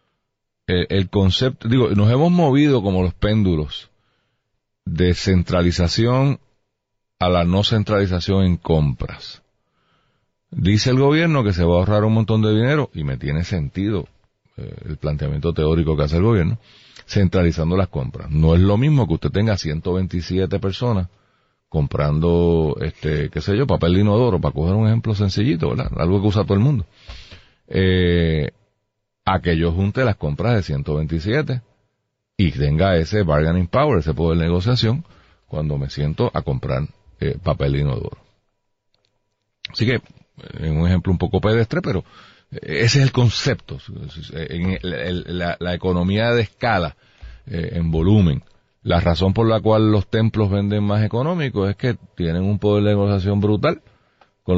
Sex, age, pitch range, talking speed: male, 40-59, 85-110 Hz, 160 wpm